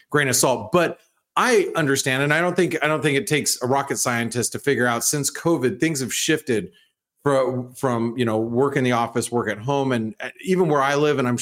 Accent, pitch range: American, 125-165 Hz